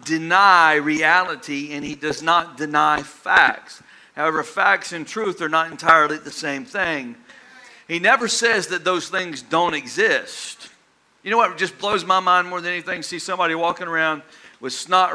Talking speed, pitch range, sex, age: 165 wpm, 150-200 Hz, male, 50-69